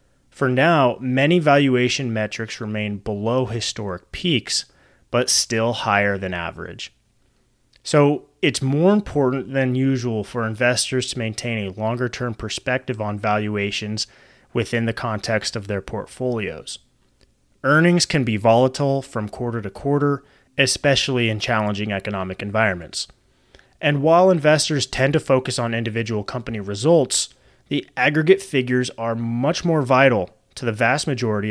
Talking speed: 130 wpm